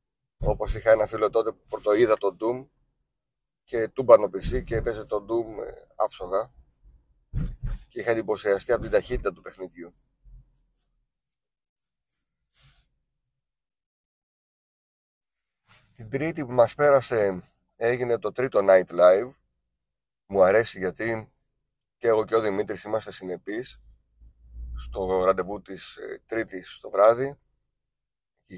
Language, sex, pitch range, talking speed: Greek, male, 95-125 Hz, 115 wpm